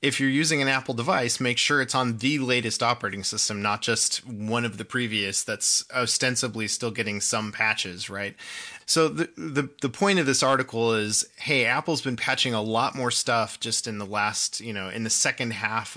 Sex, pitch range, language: male, 110-135 Hz, English